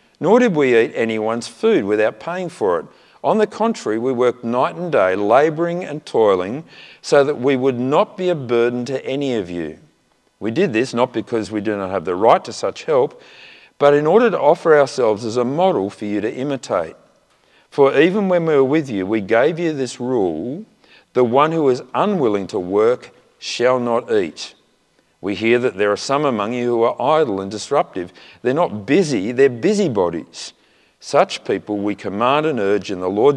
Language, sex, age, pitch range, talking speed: English, male, 50-69, 110-160 Hz, 195 wpm